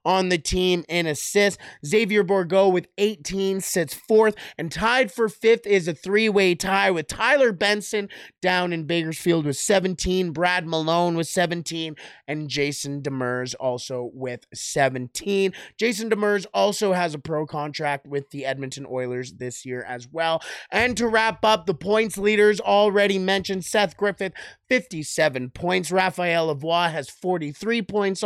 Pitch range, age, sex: 160-210 Hz, 30-49, male